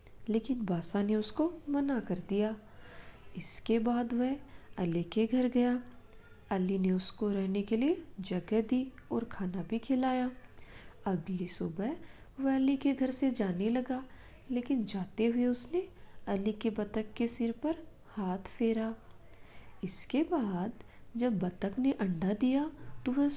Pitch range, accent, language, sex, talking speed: 190-255 Hz, native, Hindi, female, 140 wpm